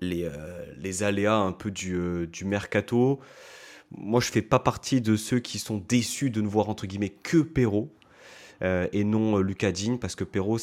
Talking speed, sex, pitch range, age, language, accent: 205 wpm, male, 90-110 Hz, 30-49, French, French